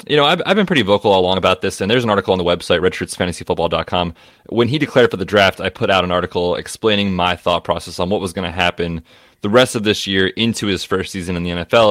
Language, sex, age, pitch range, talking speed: English, male, 20-39, 90-110 Hz, 260 wpm